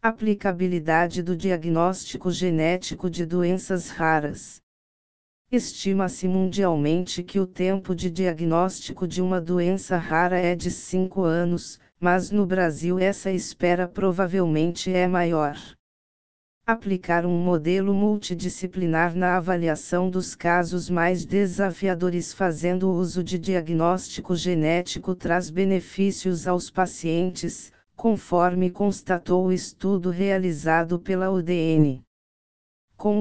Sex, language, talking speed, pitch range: female, Portuguese, 105 wpm, 175-190 Hz